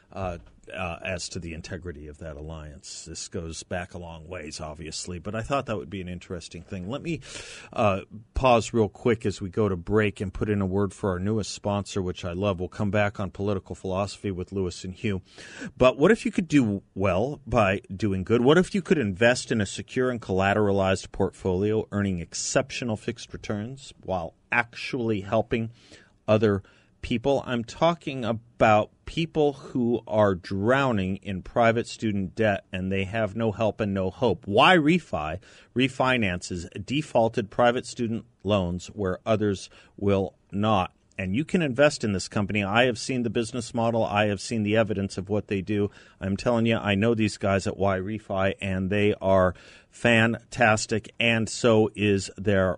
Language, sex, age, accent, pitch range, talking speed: English, male, 40-59, American, 95-120 Hz, 180 wpm